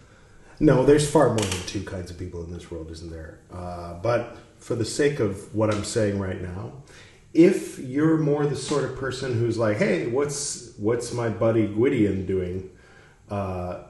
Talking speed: 180 wpm